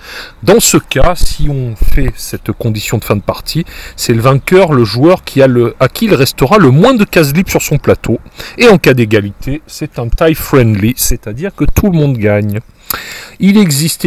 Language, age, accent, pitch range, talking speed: French, 40-59, French, 115-170 Hz, 190 wpm